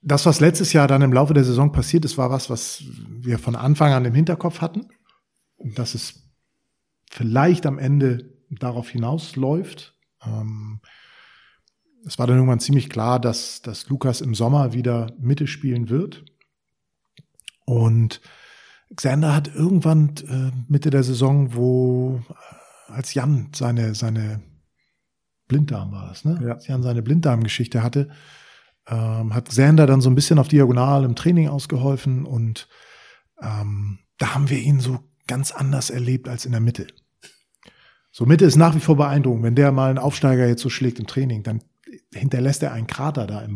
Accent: German